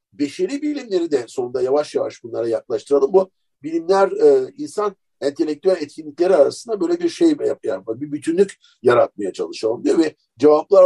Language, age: Turkish, 50-69